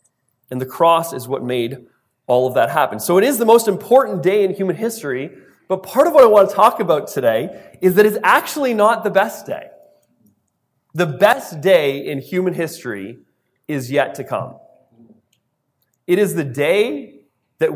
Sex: male